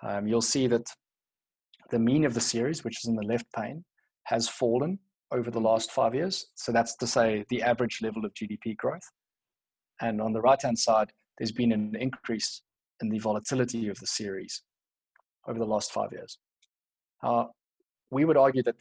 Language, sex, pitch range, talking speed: English, male, 110-125 Hz, 180 wpm